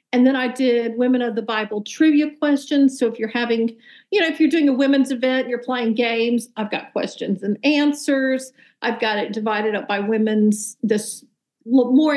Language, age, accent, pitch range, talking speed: English, 50-69, American, 225-270 Hz, 190 wpm